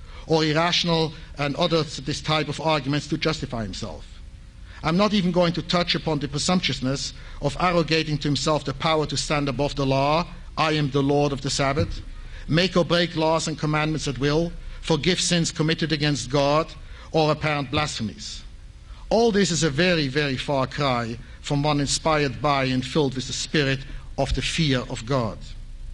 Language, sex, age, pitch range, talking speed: English, male, 50-69, 135-170 Hz, 175 wpm